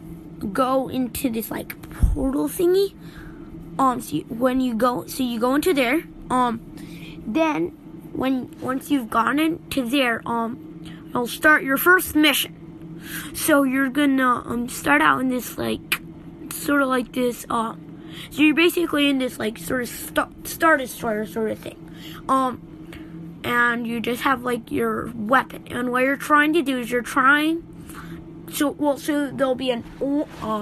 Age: 20-39